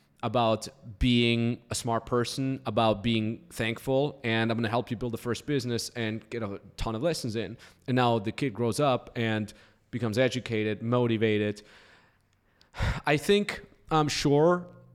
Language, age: English, 20-39